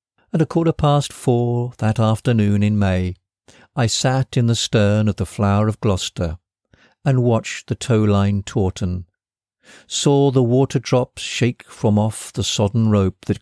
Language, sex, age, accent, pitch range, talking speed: English, male, 60-79, British, 95-115 Hz, 150 wpm